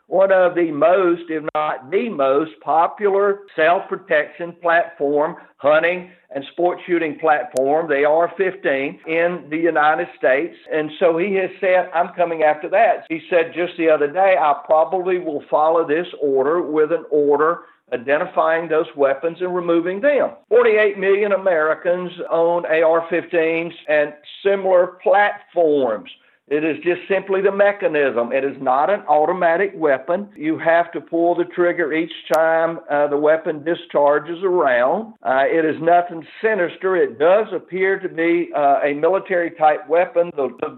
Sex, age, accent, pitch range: male, 60-79, American, 155-190 Hz